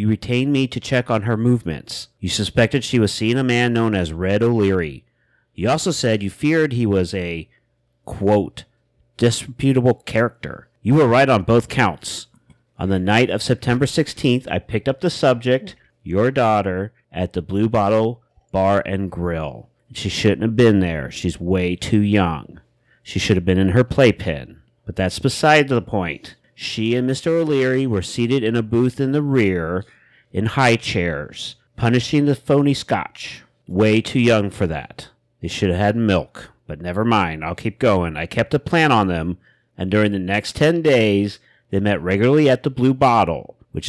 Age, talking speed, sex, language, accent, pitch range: 40-59, 180 wpm, male, English, American, 95-125 Hz